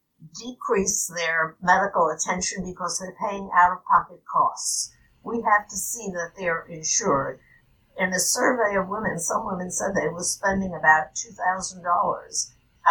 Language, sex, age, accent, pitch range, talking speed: English, female, 60-79, American, 160-195 Hz, 135 wpm